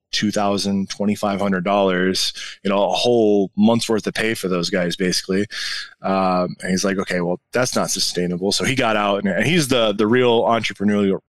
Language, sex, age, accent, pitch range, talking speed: English, male, 20-39, American, 100-115 Hz, 180 wpm